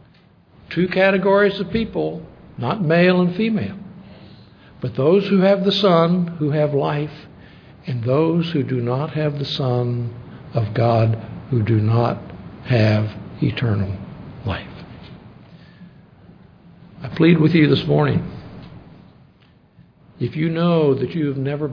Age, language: 60-79, English